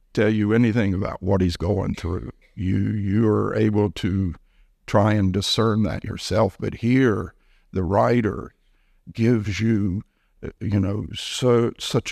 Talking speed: 135 wpm